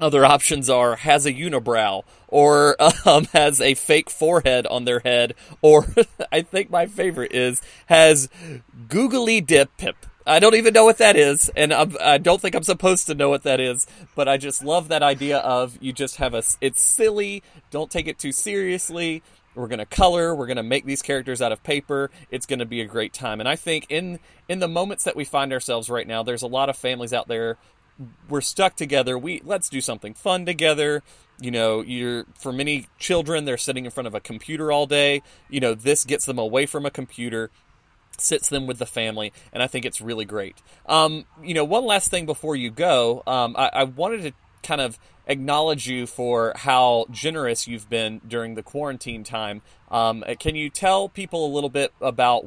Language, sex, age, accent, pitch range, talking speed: English, male, 30-49, American, 120-155 Hz, 205 wpm